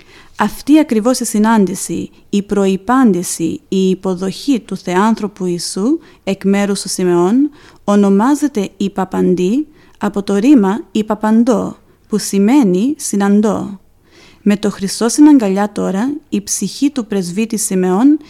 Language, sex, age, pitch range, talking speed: Greek, female, 30-49, 195-240 Hz, 110 wpm